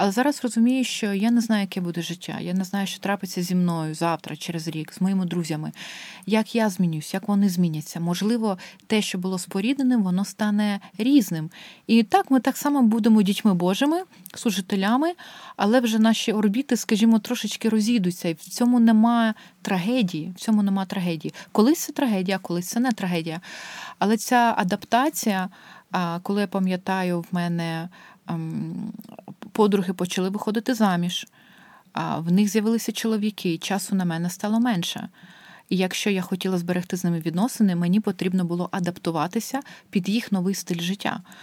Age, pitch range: 30-49, 185-235 Hz